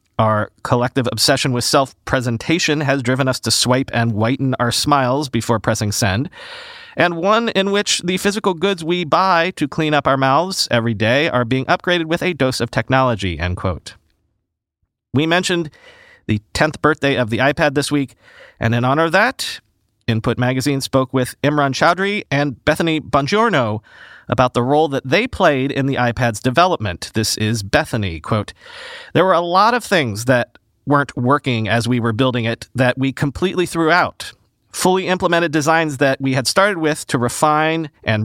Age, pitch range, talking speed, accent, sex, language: 40-59, 120-165 Hz, 170 wpm, American, male, English